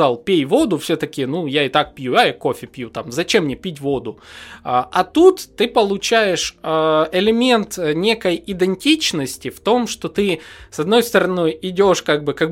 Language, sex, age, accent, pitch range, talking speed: Russian, male, 20-39, native, 160-220 Hz, 170 wpm